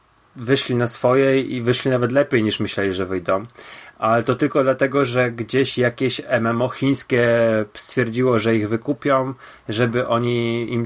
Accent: native